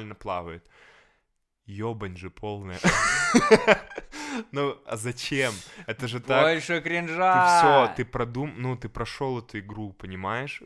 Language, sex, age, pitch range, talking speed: Russian, male, 20-39, 95-120 Hz, 115 wpm